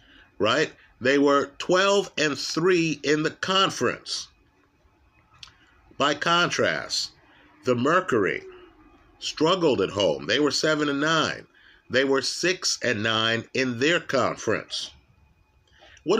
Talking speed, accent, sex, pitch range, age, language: 110 wpm, American, male, 135-170 Hz, 50-69, English